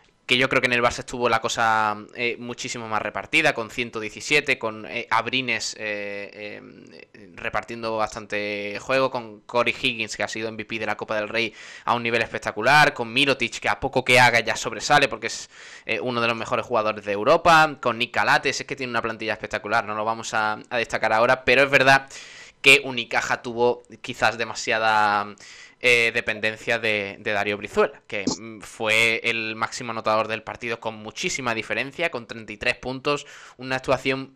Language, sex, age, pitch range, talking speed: Spanish, male, 20-39, 110-130 Hz, 180 wpm